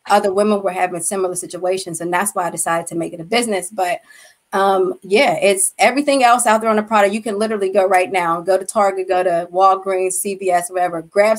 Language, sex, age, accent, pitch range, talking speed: English, female, 20-39, American, 180-205 Hz, 220 wpm